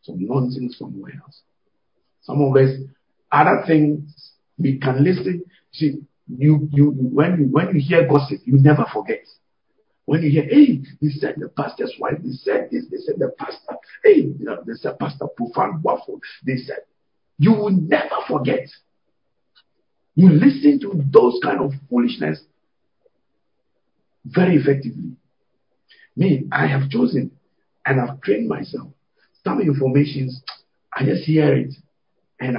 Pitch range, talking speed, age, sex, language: 135-170 Hz, 140 wpm, 50-69, male, English